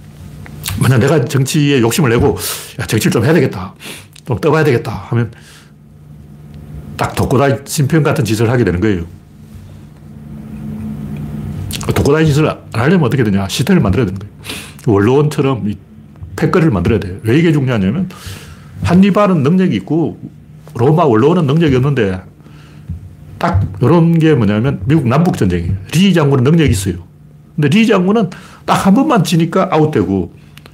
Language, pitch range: Korean, 95-155 Hz